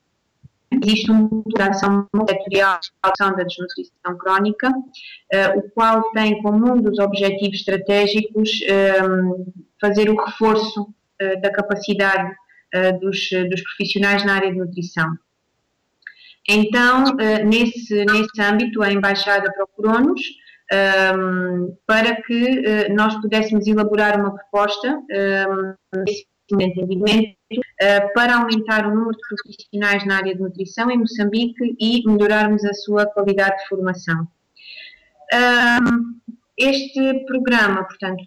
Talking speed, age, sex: 110 wpm, 30-49, female